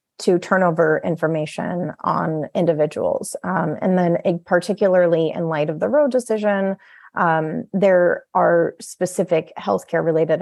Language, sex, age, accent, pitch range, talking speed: English, female, 30-49, American, 160-210 Hz, 125 wpm